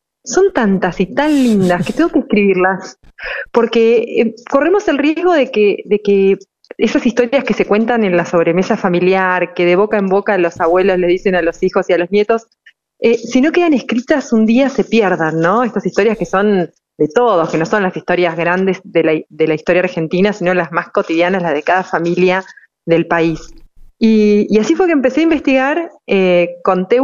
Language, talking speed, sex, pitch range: Spanish, 200 wpm, female, 180-235 Hz